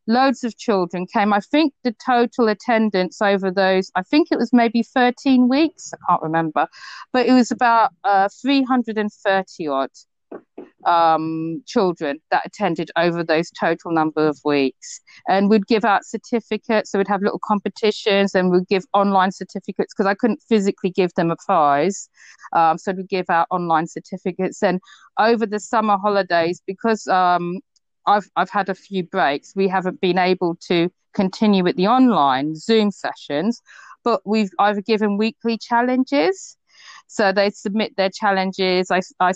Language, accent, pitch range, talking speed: English, British, 180-225 Hz, 155 wpm